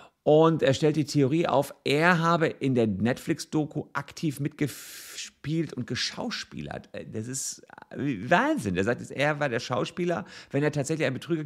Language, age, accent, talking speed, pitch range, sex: German, 50-69, German, 160 wpm, 105-150 Hz, male